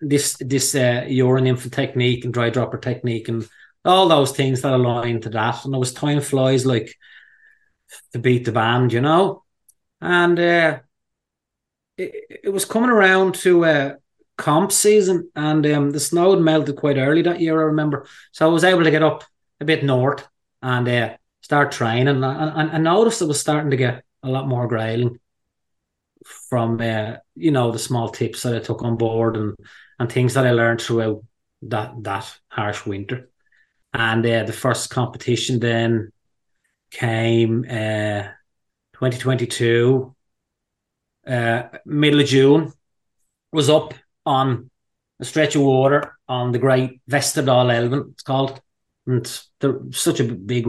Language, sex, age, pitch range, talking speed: English, male, 20-39, 115-150 Hz, 160 wpm